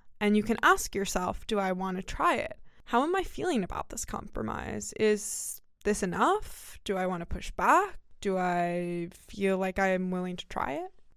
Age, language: 20-39, English